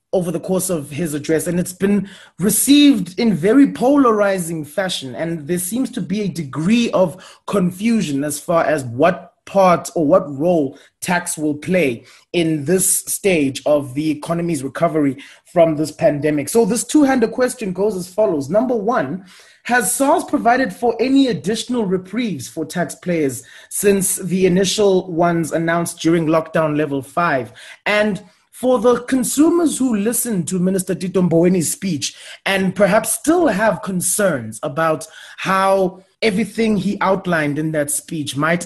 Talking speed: 150 wpm